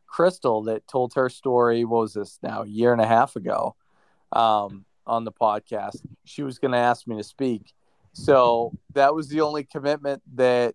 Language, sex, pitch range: English, male, 115-140 Hz